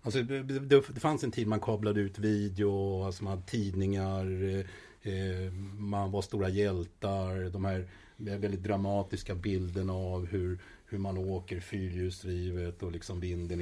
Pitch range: 95-115 Hz